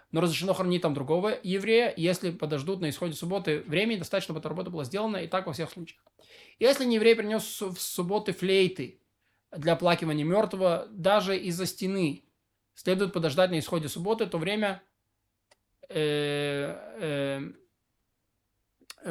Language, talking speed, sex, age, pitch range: Russian, 140 wpm, male, 20-39, 160-205 Hz